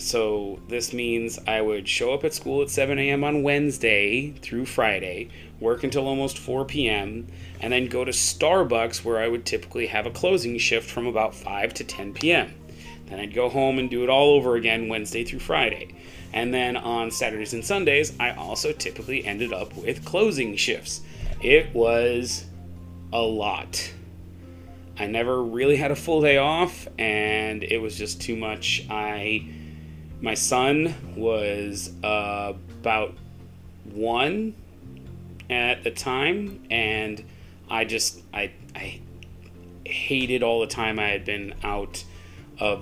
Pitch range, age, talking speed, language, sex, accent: 95-120 Hz, 30-49, 155 wpm, English, male, American